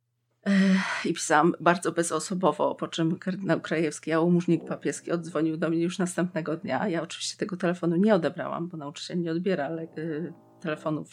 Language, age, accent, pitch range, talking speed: Polish, 30-49, native, 160-190 Hz, 150 wpm